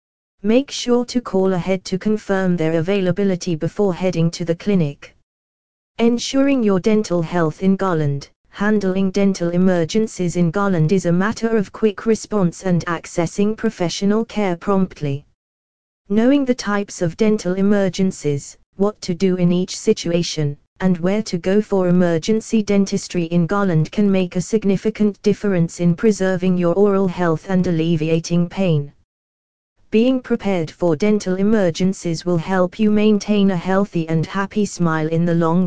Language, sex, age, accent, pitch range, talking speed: English, female, 20-39, British, 170-210 Hz, 145 wpm